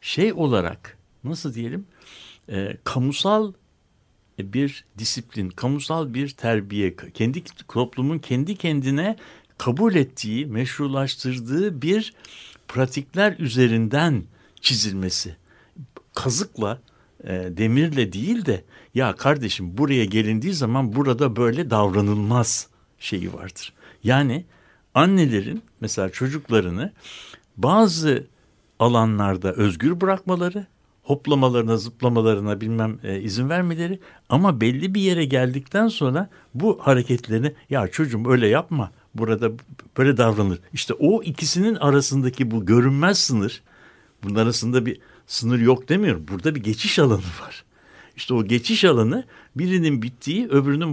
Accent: native